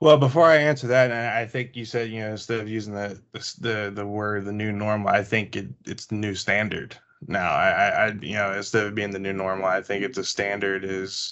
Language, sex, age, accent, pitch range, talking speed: English, male, 20-39, American, 95-115 Hz, 240 wpm